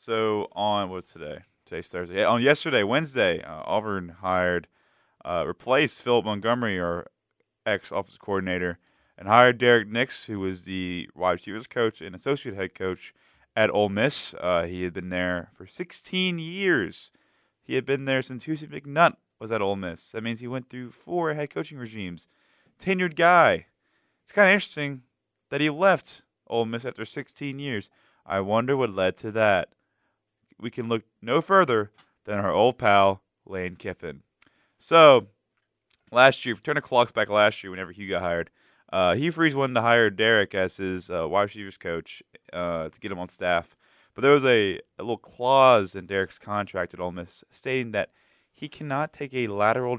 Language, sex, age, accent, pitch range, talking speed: English, male, 20-39, American, 95-130 Hz, 180 wpm